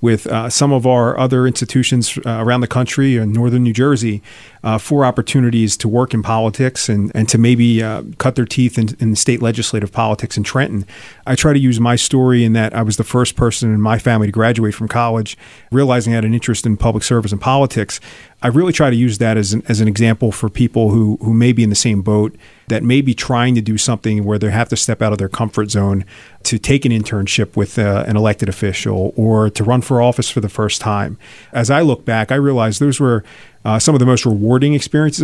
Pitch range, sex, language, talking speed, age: 110-125 Hz, male, English, 235 wpm, 40-59